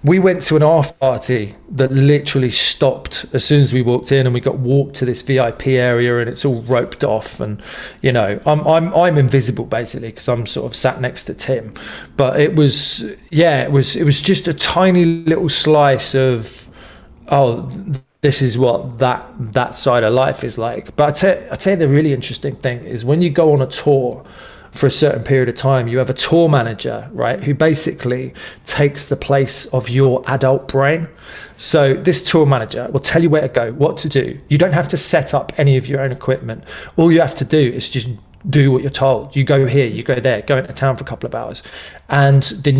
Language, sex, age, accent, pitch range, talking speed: English, male, 20-39, British, 130-150 Hz, 220 wpm